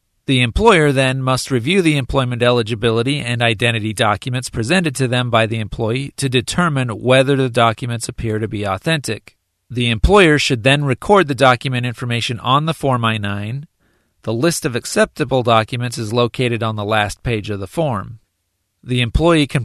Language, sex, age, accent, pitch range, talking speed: English, male, 40-59, American, 115-135 Hz, 170 wpm